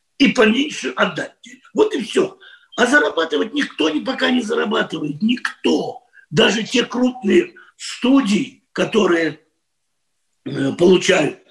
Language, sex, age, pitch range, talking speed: Russian, male, 50-69, 180-255 Hz, 100 wpm